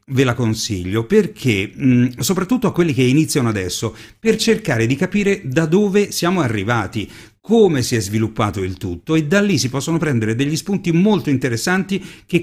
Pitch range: 115-155 Hz